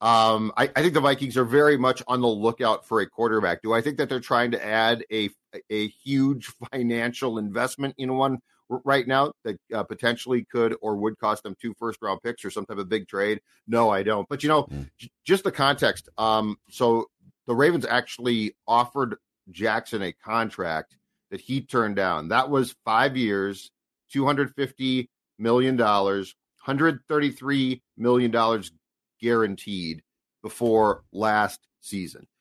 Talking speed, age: 160 wpm, 40-59